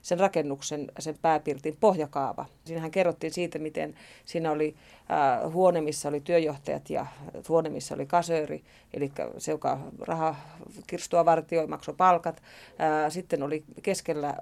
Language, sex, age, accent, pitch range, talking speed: Finnish, female, 30-49, native, 150-175 Hz, 135 wpm